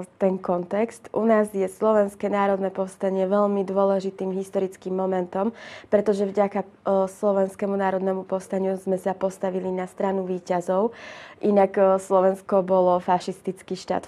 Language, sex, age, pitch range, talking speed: Czech, female, 20-39, 185-200 Hz, 120 wpm